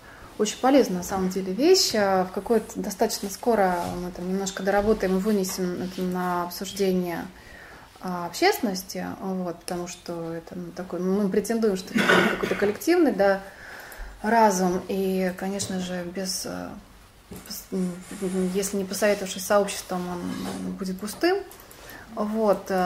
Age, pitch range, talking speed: 20-39, 180-220 Hz, 120 wpm